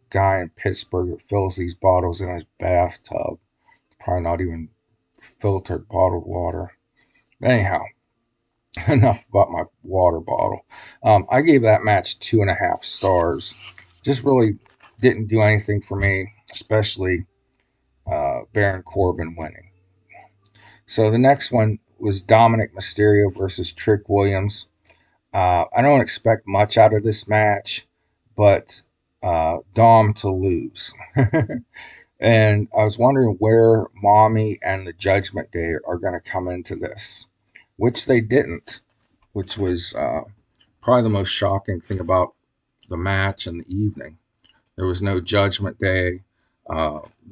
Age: 40-59